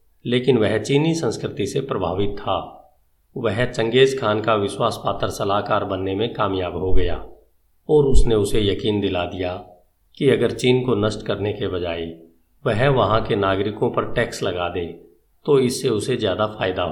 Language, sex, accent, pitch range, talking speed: Hindi, male, native, 90-125 Hz, 160 wpm